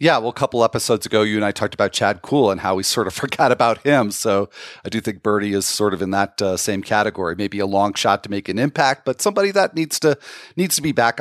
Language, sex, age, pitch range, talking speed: English, male, 40-59, 105-155 Hz, 275 wpm